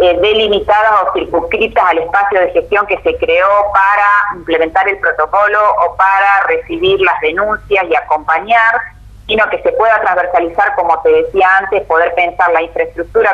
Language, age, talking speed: Spanish, 20-39, 155 wpm